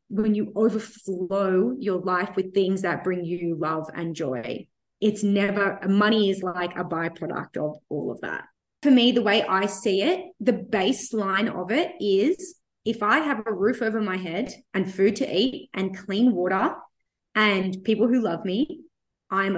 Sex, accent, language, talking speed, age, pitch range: female, Australian, English, 175 wpm, 20-39, 195-235 Hz